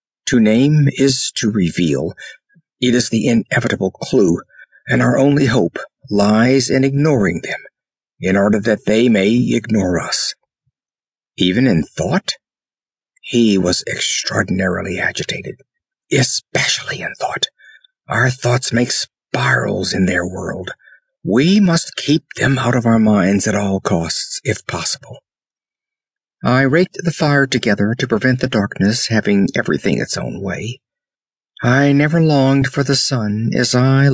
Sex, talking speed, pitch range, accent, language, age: male, 135 wpm, 110-140 Hz, American, English, 60-79